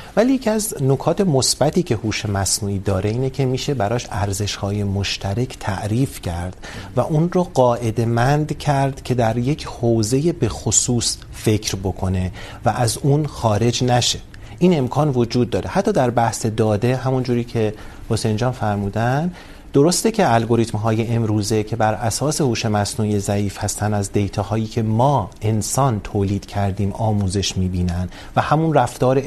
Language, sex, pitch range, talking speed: Urdu, male, 105-130 Hz, 150 wpm